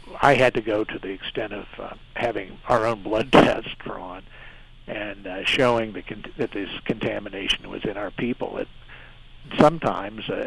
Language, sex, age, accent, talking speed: English, male, 50-69, American, 170 wpm